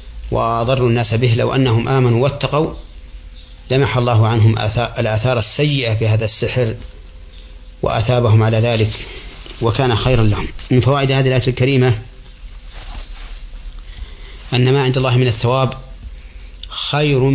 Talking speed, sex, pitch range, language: 110 wpm, male, 75-120 Hz, Arabic